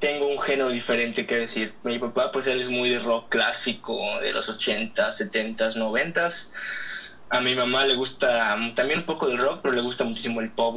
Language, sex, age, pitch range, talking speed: Spanish, male, 20-39, 120-140 Hz, 215 wpm